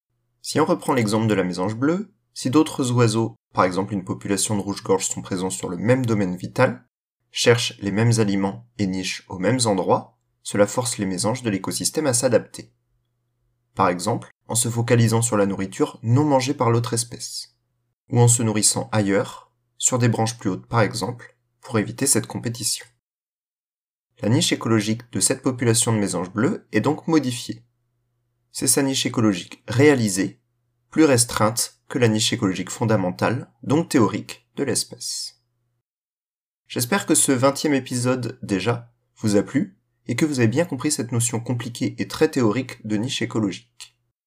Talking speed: 165 wpm